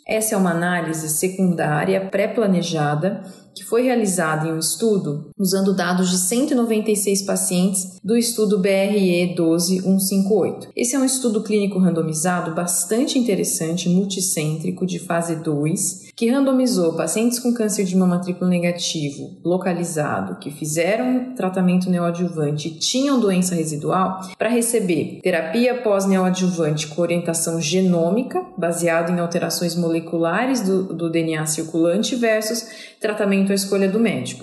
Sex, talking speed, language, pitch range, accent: female, 125 wpm, Portuguese, 170-215 Hz, Brazilian